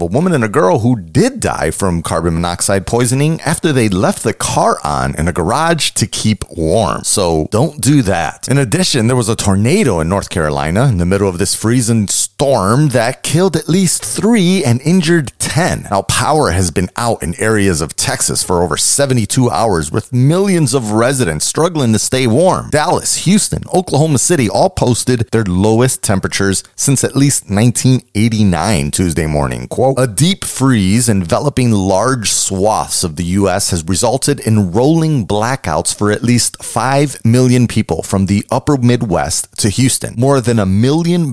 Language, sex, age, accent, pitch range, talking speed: English, male, 30-49, American, 100-140 Hz, 175 wpm